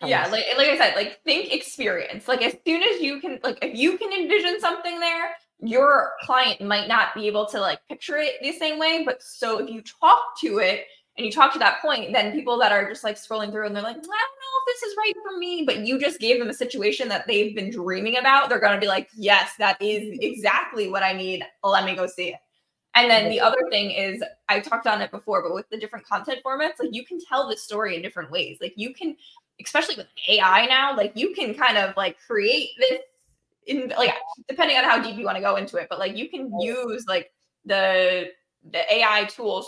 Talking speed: 240 wpm